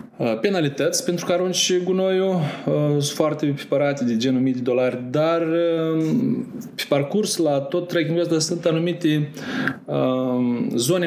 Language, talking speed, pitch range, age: Romanian, 140 wpm, 130-170 Hz, 20-39